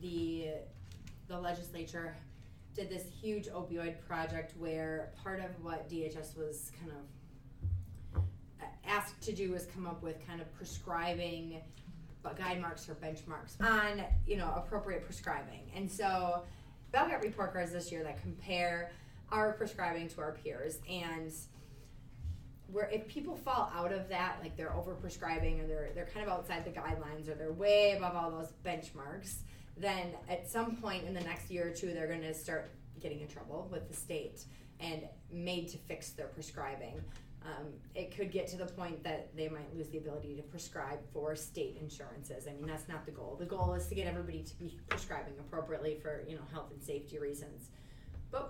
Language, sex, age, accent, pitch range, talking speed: English, female, 20-39, American, 150-180 Hz, 180 wpm